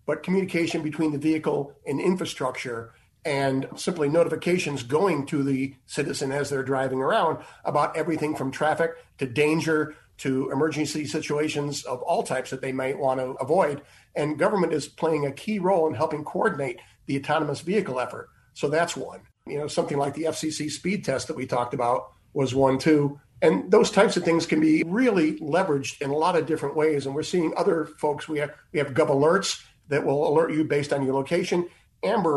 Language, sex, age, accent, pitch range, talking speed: English, male, 50-69, American, 135-160 Hz, 190 wpm